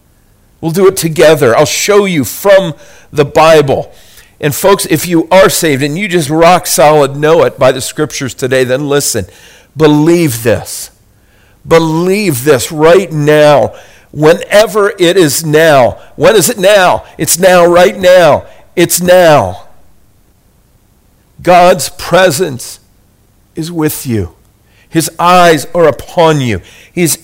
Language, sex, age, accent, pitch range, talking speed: English, male, 50-69, American, 105-170 Hz, 130 wpm